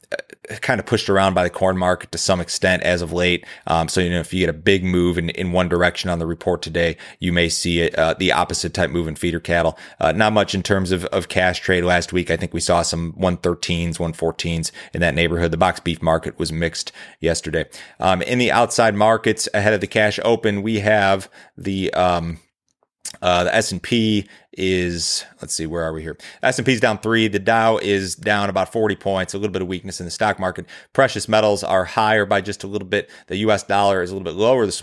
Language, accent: English, American